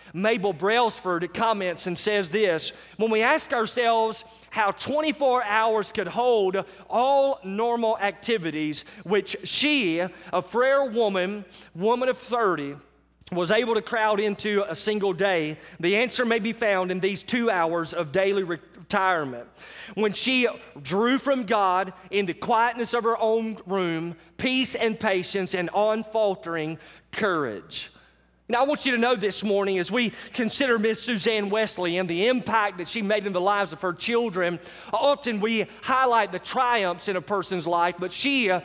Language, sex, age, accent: English, male, 30-49, American